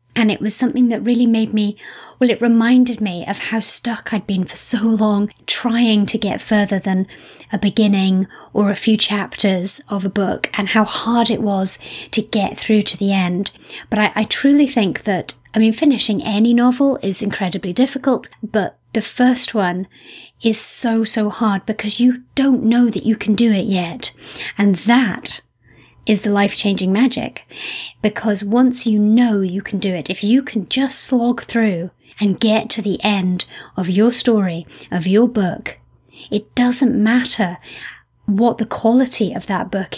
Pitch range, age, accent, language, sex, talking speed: 195-230 Hz, 30-49, British, English, female, 175 wpm